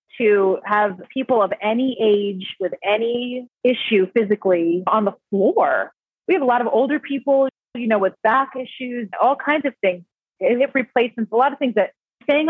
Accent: American